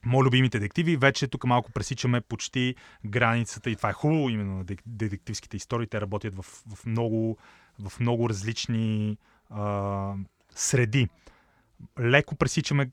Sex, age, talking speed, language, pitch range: male, 30-49, 135 wpm, Bulgarian, 110-135 Hz